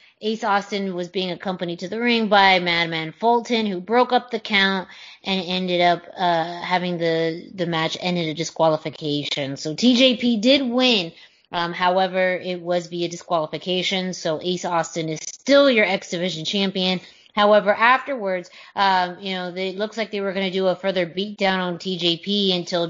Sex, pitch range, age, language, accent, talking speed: female, 165-200 Hz, 30-49, English, American, 175 wpm